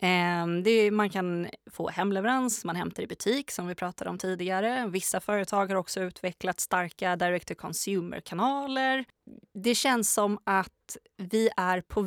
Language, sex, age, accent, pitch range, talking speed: Swedish, female, 20-39, native, 180-235 Hz, 145 wpm